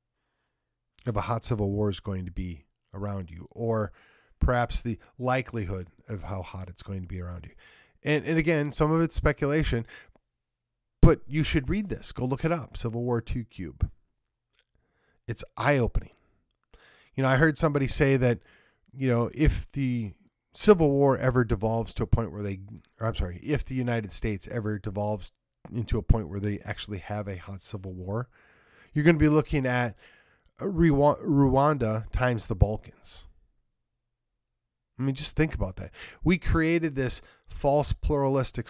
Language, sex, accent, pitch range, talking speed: English, male, American, 105-140 Hz, 165 wpm